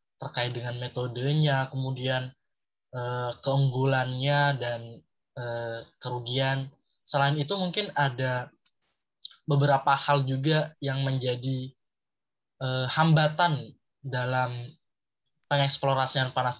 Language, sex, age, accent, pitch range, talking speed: Indonesian, male, 20-39, native, 130-155 Hz, 70 wpm